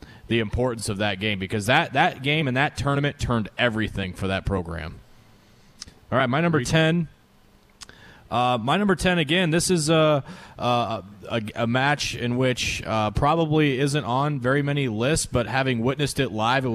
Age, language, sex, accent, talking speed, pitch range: 30-49, English, male, American, 175 wpm, 105-125 Hz